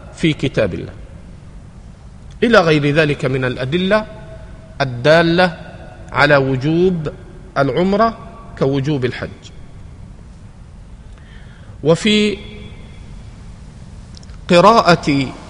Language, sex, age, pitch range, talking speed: Arabic, male, 40-59, 130-170 Hz, 50 wpm